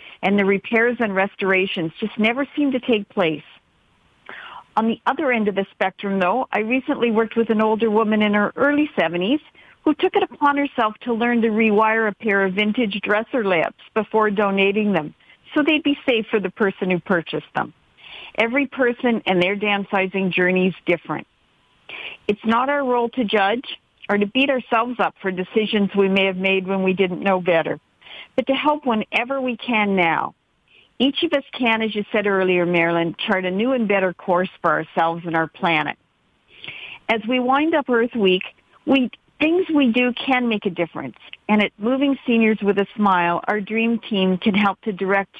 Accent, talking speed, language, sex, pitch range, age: American, 190 wpm, English, female, 190-240 Hz, 50-69